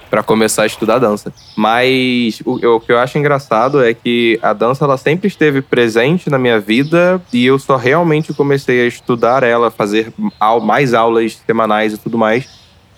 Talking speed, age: 175 wpm, 10-29